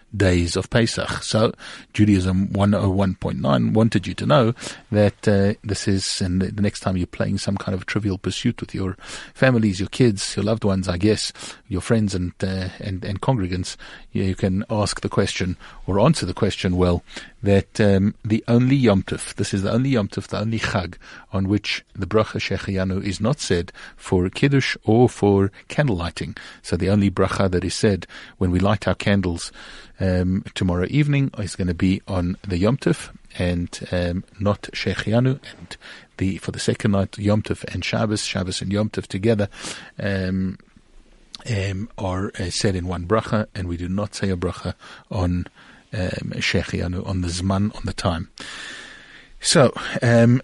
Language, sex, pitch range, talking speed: English, male, 95-110 Hz, 180 wpm